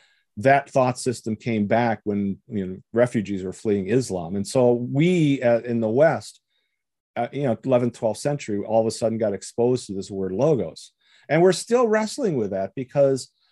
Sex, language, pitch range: male, English, 115-145 Hz